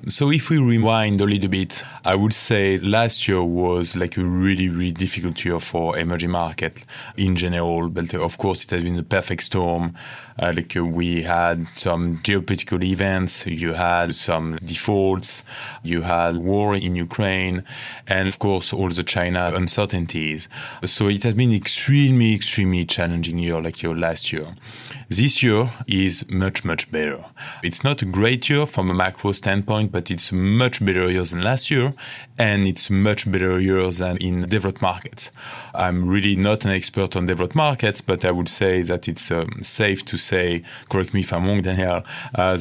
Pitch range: 90-105 Hz